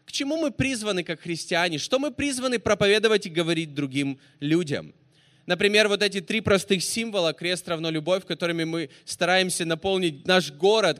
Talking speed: 160 wpm